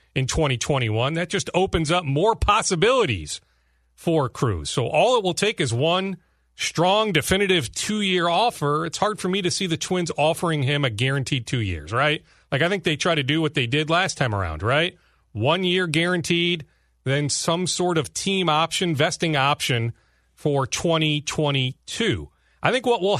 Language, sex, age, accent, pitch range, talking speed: English, male, 40-59, American, 135-185 Hz, 175 wpm